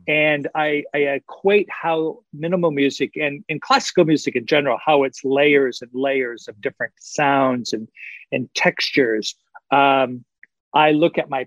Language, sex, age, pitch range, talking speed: English, male, 50-69, 130-160 Hz, 150 wpm